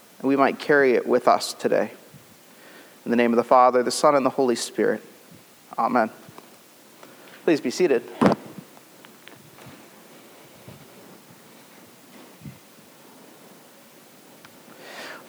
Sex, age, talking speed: male, 30-49, 95 wpm